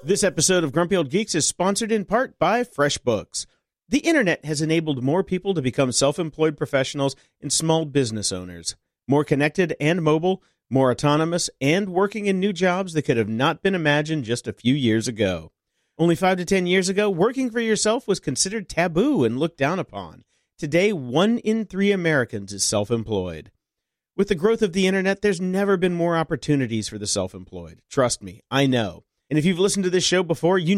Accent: American